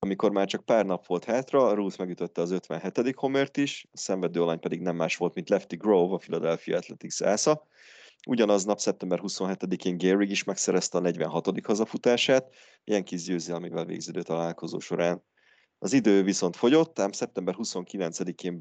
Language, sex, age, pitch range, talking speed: Hungarian, male, 30-49, 85-100 Hz, 160 wpm